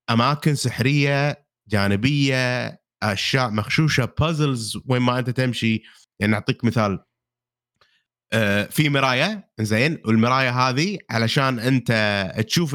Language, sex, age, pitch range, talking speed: Arabic, male, 30-49, 130-185 Hz, 105 wpm